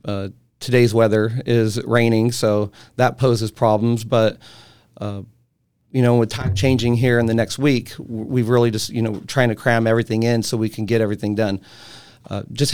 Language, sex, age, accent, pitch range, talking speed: English, male, 30-49, American, 115-130 Hz, 185 wpm